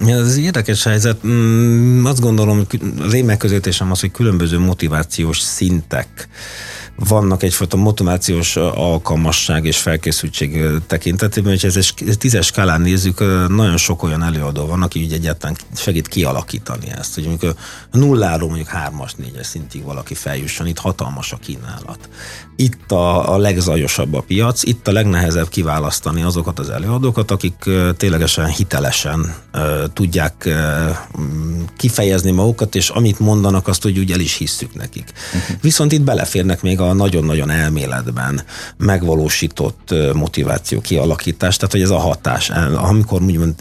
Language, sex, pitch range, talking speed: Hungarian, male, 80-105 Hz, 130 wpm